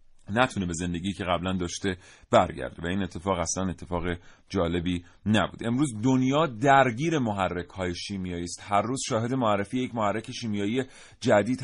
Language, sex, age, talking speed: Persian, male, 30-49, 145 wpm